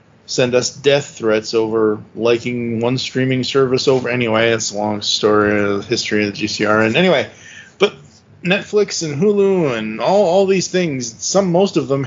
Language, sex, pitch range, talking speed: English, male, 115-145 Hz, 185 wpm